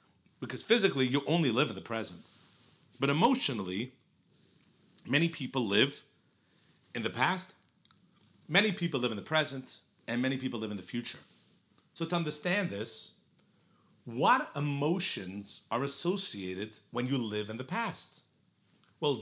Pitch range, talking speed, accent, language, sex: 115-170 Hz, 135 wpm, American, English, male